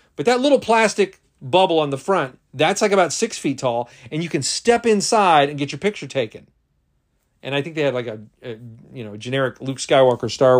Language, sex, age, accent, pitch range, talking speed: English, male, 40-59, American, 115-165 Hz, 215 wpm